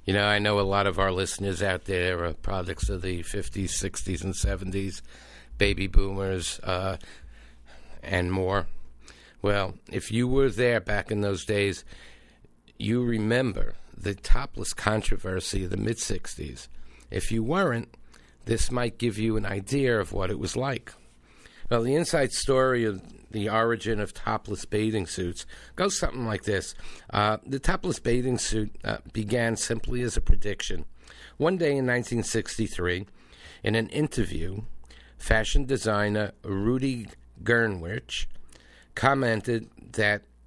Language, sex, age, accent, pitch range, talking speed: English, male, 50-69, American, 95-115 Hz, 140 wpm